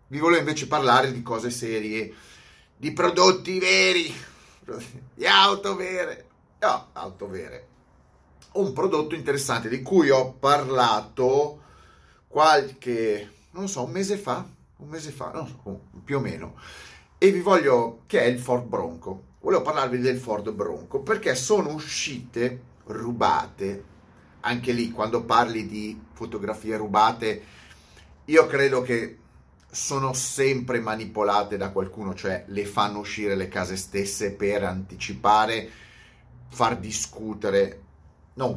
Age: 30-49